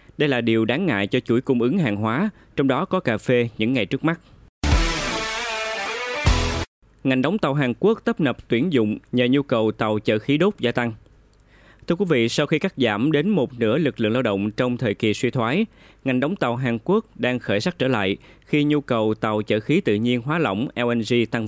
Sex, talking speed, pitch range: male, 220 wpm, 110-145 Hz